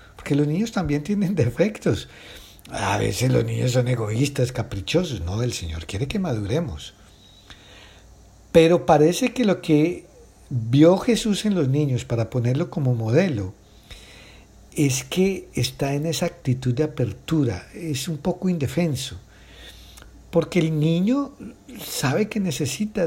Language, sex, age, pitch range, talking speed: Spanish, male, 60-79, 105-155 Hz, 135 wpm